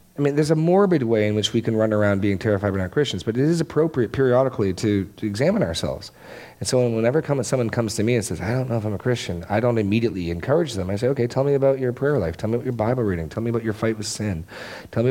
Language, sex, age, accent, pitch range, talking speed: English, male, 40-59, American, 90-130 Hz, 285 wpm